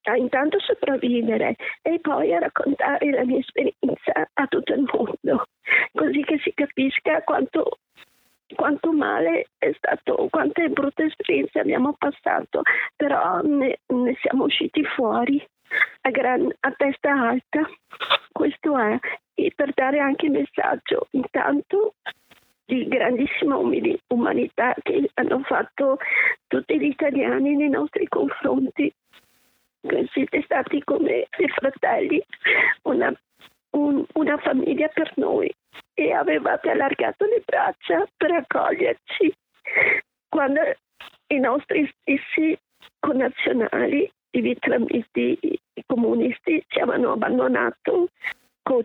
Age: 50-69